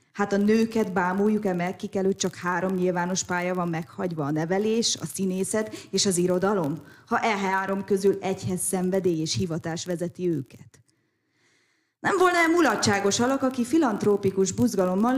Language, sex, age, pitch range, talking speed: Hungarian, female, 20-39, 180-235 Hz, 140 wpm